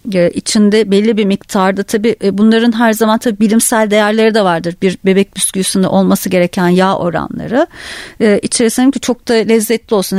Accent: native